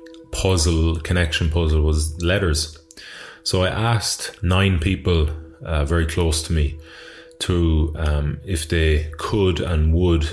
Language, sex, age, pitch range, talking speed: English, male, 20-39, 75-85 Hz, 130 wpm